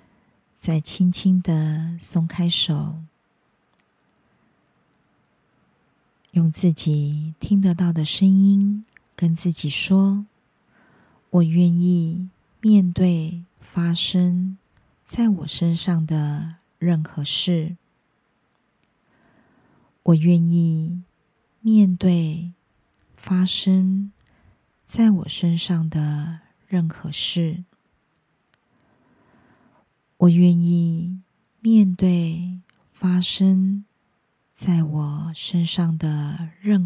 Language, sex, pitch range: Chinese, female, 160-185 Hz